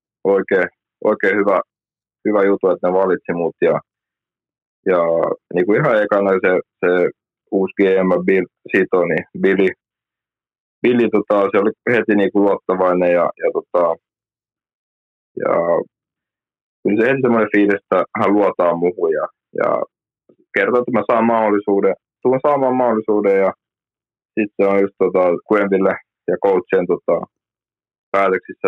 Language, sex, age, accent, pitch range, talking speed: Finnish, male, 20-39, native, 95-110 Hz, 120 wpm